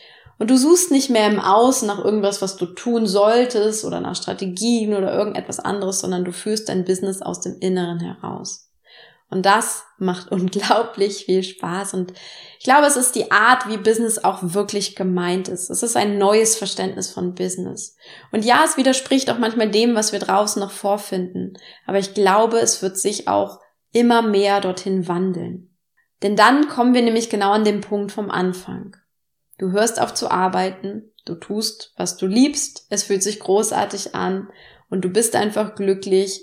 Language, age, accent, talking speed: German, 20-39, German, 180 wpm